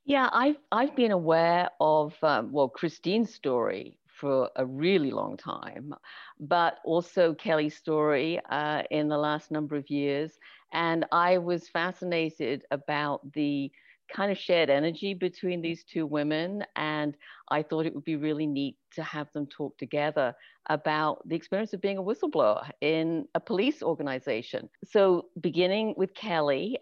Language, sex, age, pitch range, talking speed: English, female, 50-69, 150-190 Hz, 150 wpm